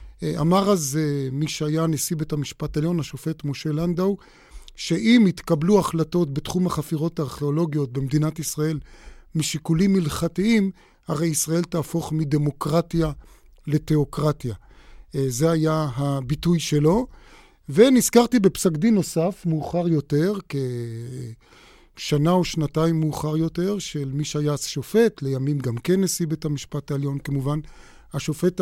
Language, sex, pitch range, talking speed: Hebrew, male, 150-180 Hz, 115 wpm